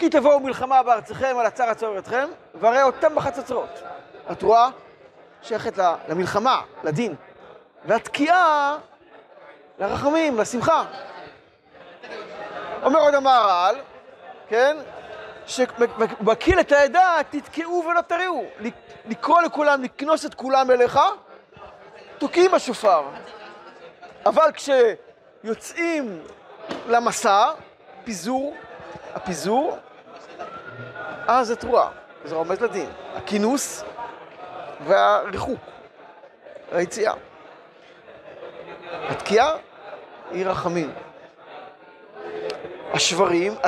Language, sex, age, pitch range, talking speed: Hebrew, male, 40-59, 225-315 Hz, 75 wpm